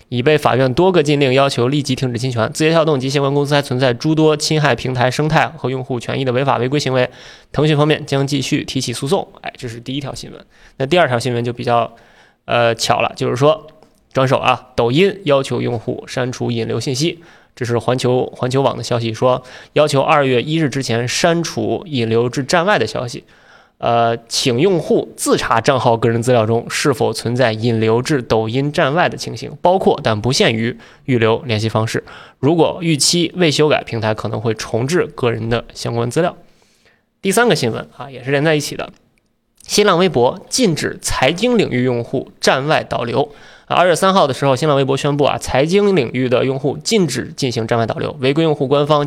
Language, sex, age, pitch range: Chinese, male, 20-39, 120-150 Hz